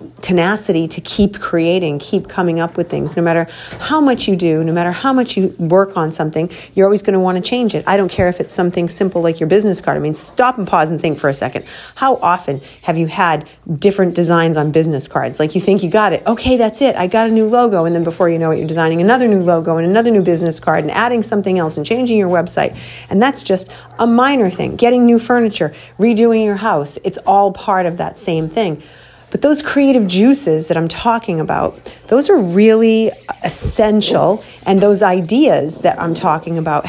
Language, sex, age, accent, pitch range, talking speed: English, female, 40-59, American, 170-215 Hz, 220 wpm